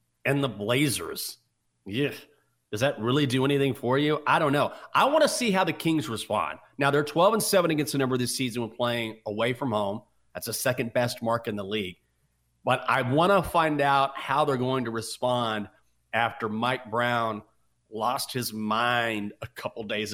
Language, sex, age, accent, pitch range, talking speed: English, male, 40-59, American, 115-140 Hz, 190 wpm